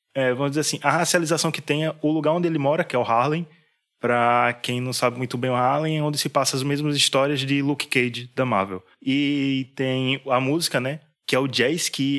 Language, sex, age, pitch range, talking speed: Portuguese, male, 20-39, 125-155 Hz, 235 wpm